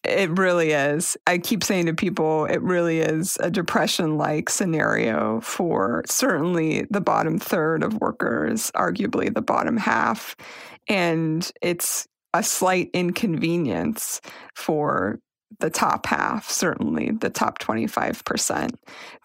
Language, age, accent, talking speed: English, 30-49, American, 120 wpm